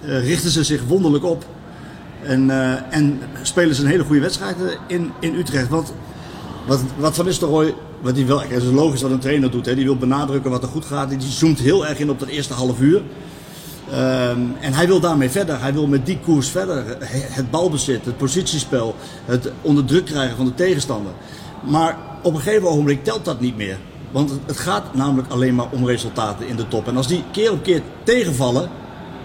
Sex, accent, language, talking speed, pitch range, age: male, Dutch, Dutch, 200 wpm, 125-155 Hz, 50-69